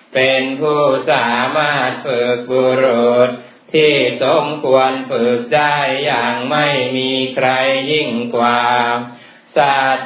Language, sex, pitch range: Thai, male, 130-150 Hz